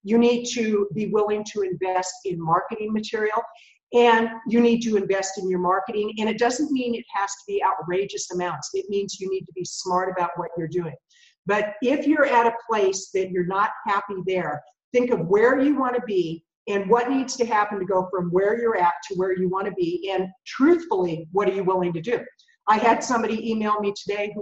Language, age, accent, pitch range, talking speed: English, 50-69, American, 190-235 Hz, 220 wpm